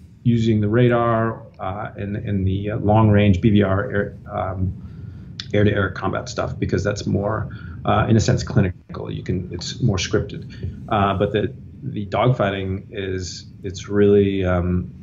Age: 30-49